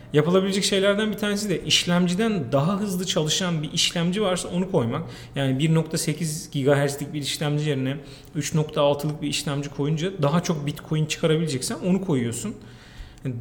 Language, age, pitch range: Turkish, 40-59, 140-185 Hz